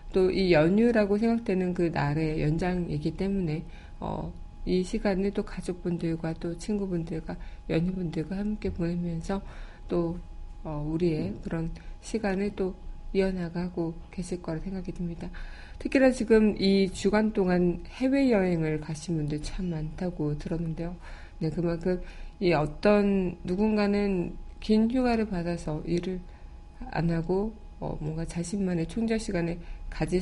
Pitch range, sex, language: 165-195 Hz, female, Korean